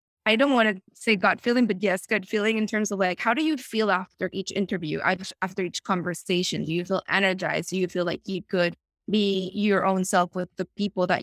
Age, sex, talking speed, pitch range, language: 20-39, female, 230 wpm, 185-210 Hz, English